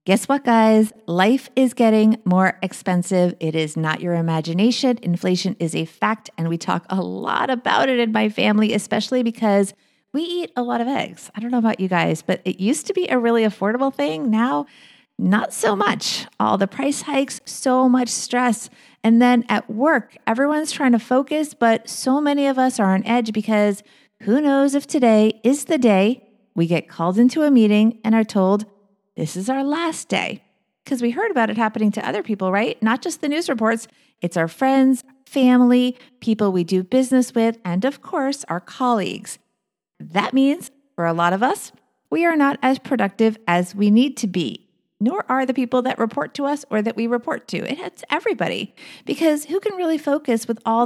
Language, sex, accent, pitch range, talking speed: English, female, American, 195-260 Hz, 200 wpm